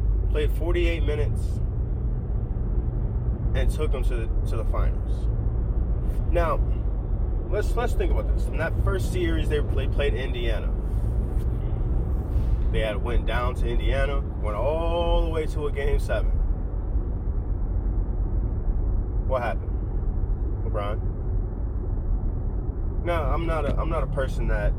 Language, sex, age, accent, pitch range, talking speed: English, male, 20-39, American, 90-110 Hz, 125 wpm